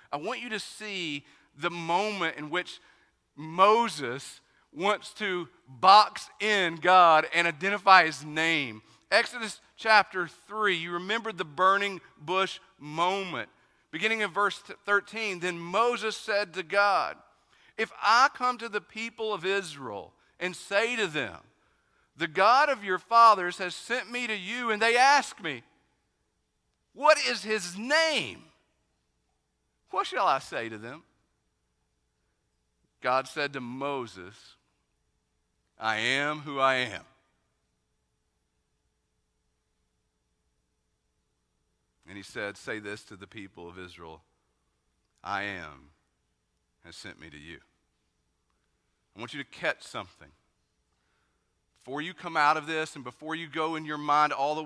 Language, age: English, 50-69